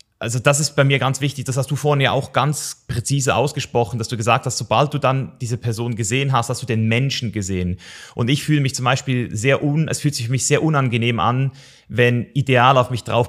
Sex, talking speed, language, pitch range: male, 240 wpm, German, 110-135 Hz